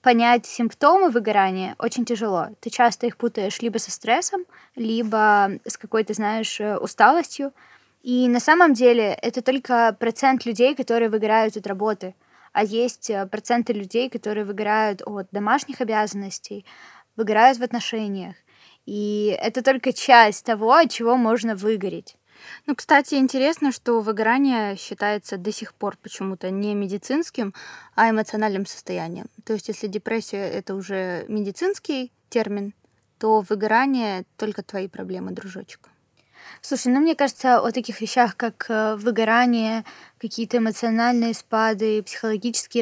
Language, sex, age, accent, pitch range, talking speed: Ukrainian, female, 20-39, native, 210-245 Hz, 130 wpm